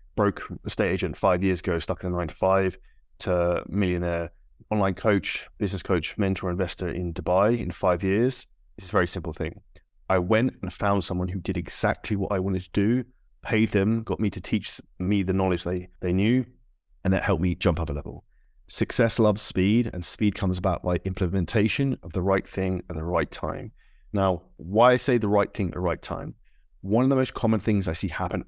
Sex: male